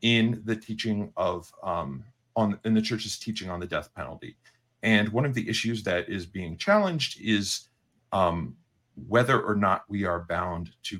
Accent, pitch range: American, 100-125 Hz